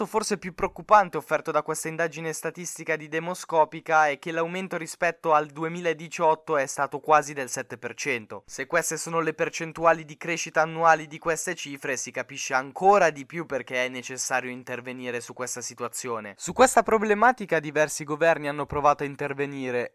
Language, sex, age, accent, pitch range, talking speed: Italian, male, 20-39, native, 150-200 Hz, 160 wpm